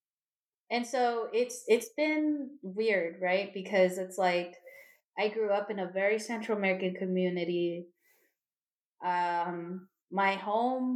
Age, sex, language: 20-39, female, English